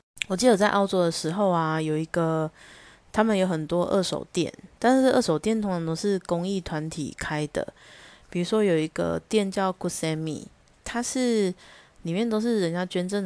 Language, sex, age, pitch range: Chinese, female, 20-39, 160-200 Hz